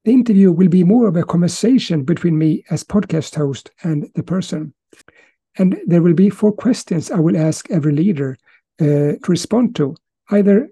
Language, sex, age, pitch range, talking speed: English, male, 60-79, 160-205 Hz, 180 wpm